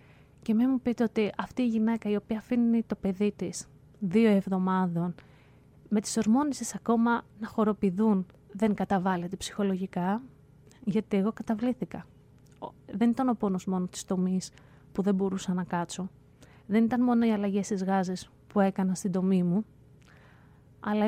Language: Greek